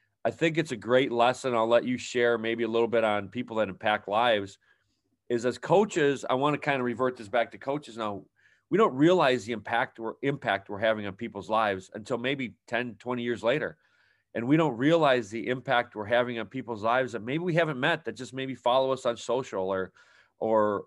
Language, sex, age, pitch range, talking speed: English, male, 40-59, 115-135 Hz, 220 wpm